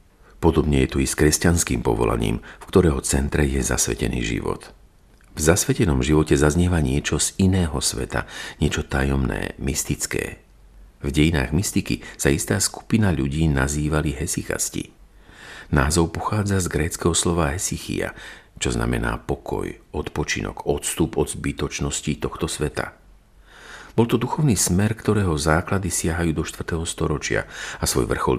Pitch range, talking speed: 70-90 Hz, 130 wpm